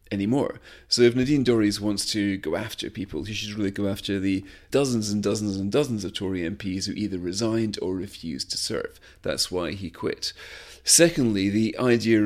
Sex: male